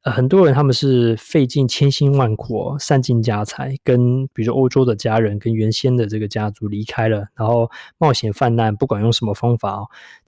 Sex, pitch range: male, 110-140 Hz